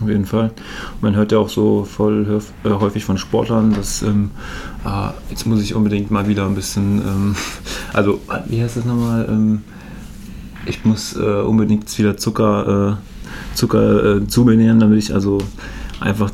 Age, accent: 20-39, German